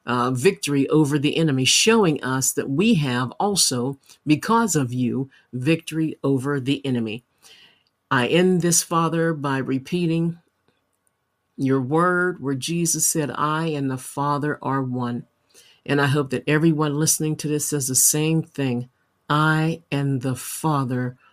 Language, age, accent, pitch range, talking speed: English, 50-69, American, 130-160 Hz, 145 wpm